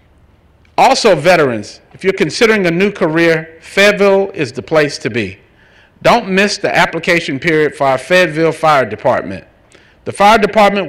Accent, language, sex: American, English, male